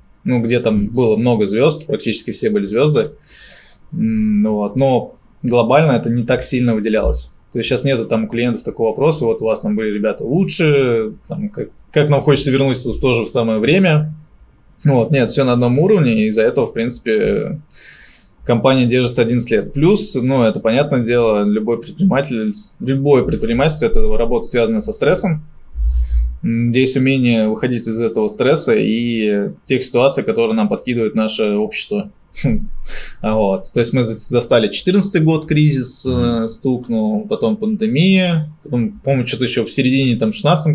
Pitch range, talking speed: 110-155 Hz, 155 wpm